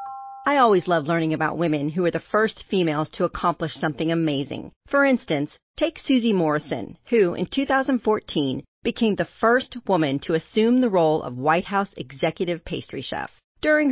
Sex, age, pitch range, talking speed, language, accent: female, 40-59, 160-210 Hz, 165 wpm, English, American